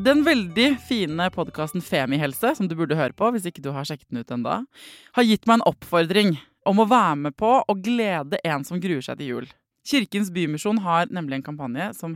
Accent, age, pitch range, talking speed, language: Swedish, 20-39, 155-225 Hz, 210 wpm, English